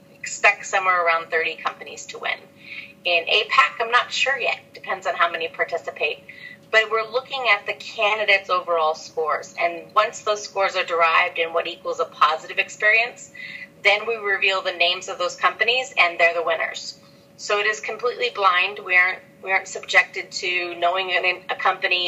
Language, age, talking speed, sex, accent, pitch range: English, 30-49, 175 wpm, female, American, 170-220 Hz